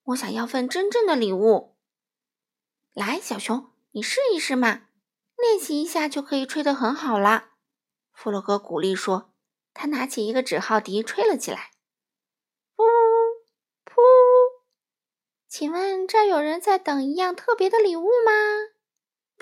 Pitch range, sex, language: 230-375 Hz, female, Chinese